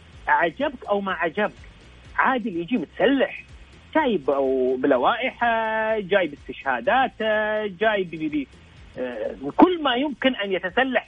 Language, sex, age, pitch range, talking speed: Arabic, male, 30-49, 165-235 Hz, 95 wpm